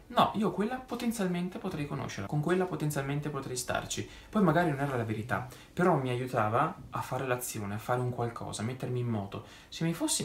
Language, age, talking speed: Italian, 20-39, 200 wpm